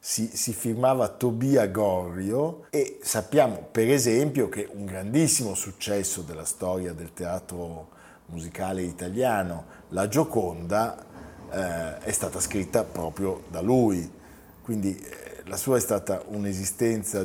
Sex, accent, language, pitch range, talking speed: male, native, Italian, 90-120 Hz, 120 wpm